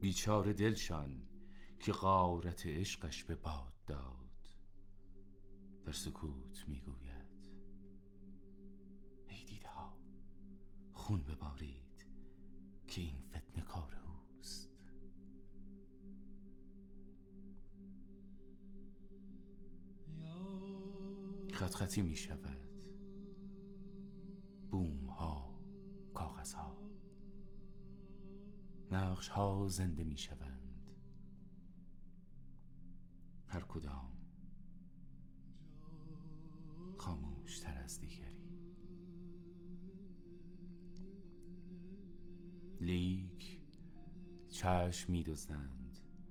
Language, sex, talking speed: Persian, male, 50 wpm